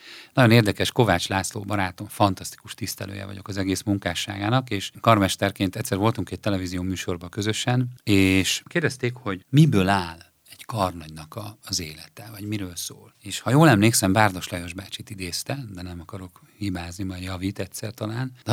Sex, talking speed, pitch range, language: male, 155 wpm, 90-115 Hz, Hungarian